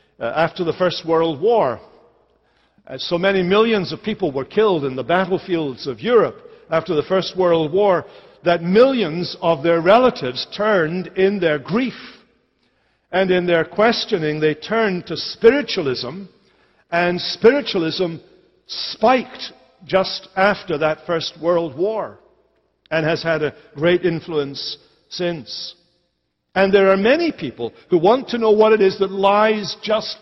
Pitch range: 160-215 Hz